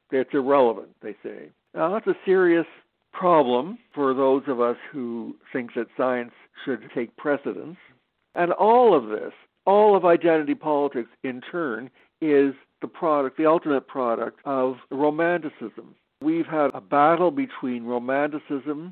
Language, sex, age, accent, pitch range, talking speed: English, male, 60-79, American, 125-150 Hz, 140 wpm